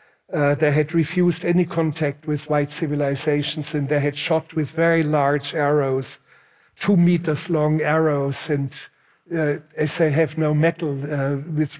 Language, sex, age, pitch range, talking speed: Greek, male, 60-79, 145-165 Hz, 155 wpm